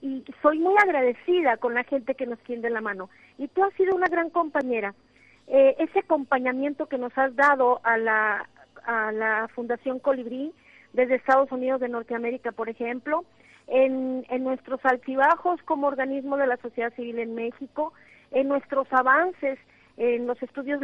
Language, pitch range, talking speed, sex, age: Spanish, 245-290 Hz, 165 wpm, female, 40-59